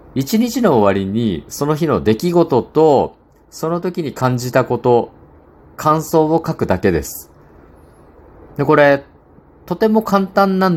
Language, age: Japanese, 50-69